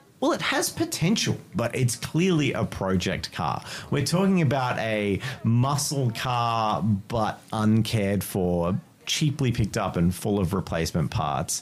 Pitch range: 95-125 Hz